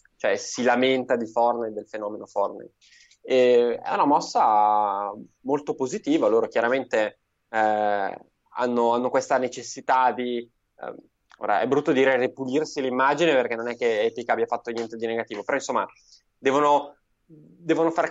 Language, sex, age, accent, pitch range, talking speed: Italian, male, 20-39, native, 115-135 Hz, 145 wpm